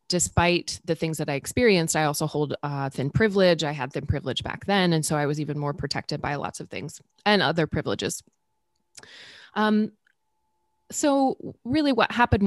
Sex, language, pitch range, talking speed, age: female, English, 150-185 Hz, 185 wpm, 20-39